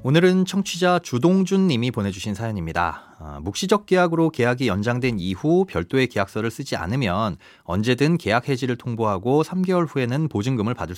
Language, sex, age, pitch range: Korean, male, 30-49, 110-175 Hz